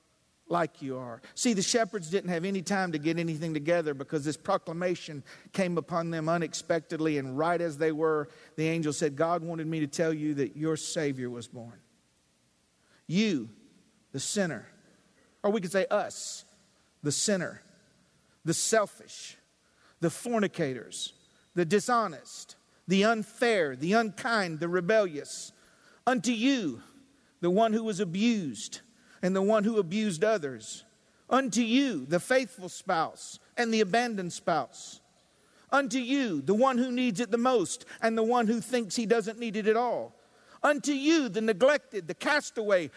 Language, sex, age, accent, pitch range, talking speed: English, male, 50-69, American, 165-235 Hz, 155 wpm